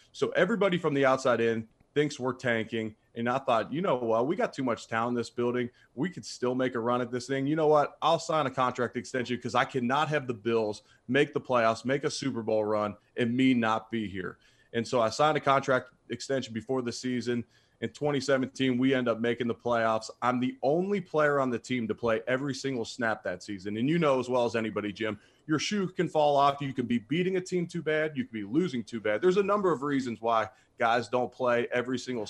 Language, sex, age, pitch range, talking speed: English, male, 30-49, 115-135 Hz, 240 wpm